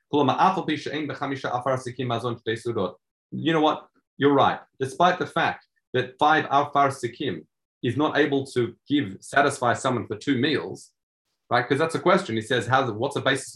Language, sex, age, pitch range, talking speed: English, male, 30-49, 110-145 Hz, 135 wpm